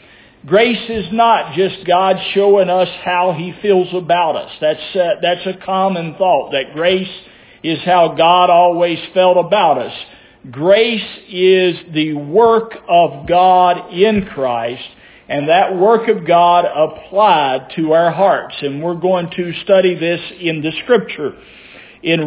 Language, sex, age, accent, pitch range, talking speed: English, male, 50-69, American, 175-220 Hz, 145 wpm